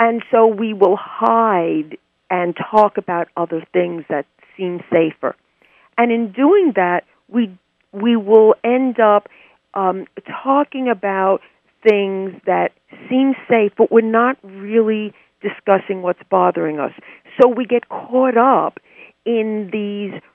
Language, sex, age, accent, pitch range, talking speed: English, female, 50-69, American, 185-235 Hz, 130 wpm